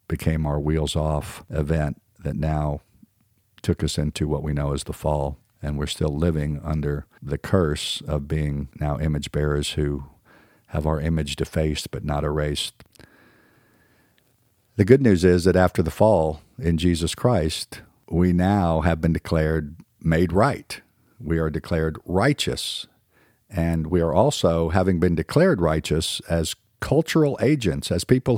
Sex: male